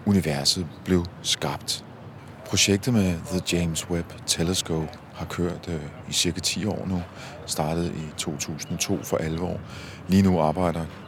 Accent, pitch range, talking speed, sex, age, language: native, 80-95 Hz, 135 wpm, male, 40-59, Danish